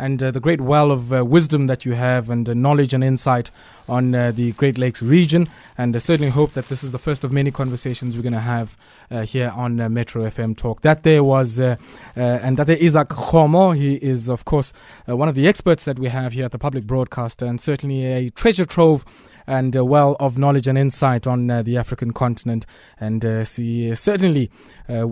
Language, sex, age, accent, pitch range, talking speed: English, male, 20-39, South African, 125-155 Hz, 225 wpm